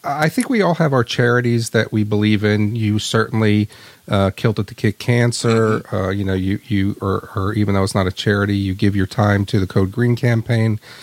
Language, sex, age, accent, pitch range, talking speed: English, male, 40-59, American, 100-125 Hz, 225 wpm